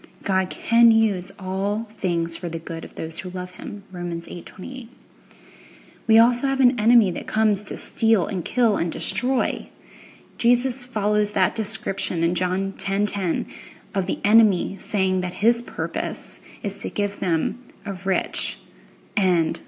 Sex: female